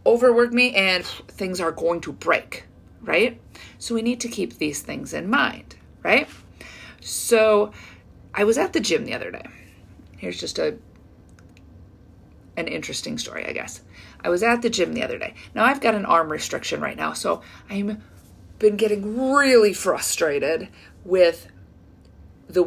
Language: English